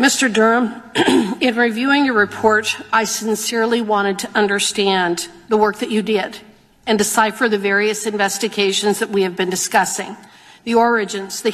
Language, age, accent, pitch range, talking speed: English, 50-69, American, 205-240 Hz, 150 wpm